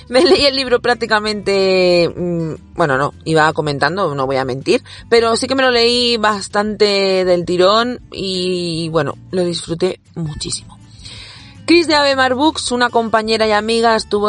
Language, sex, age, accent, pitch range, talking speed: Spanish, female, 30-49, Spanish, 170-220 Hz, 150 wpm